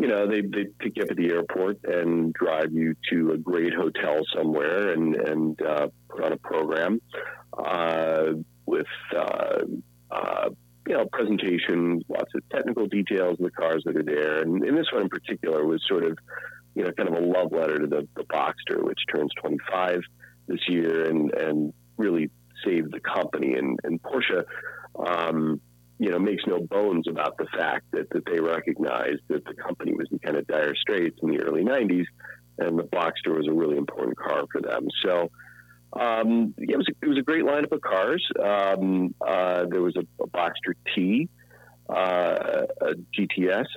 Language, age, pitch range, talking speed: English, 40-59, 80-100 Hz, 185 wpm